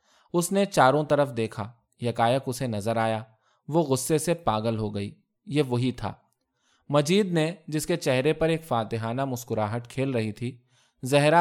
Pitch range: 115-155 Hz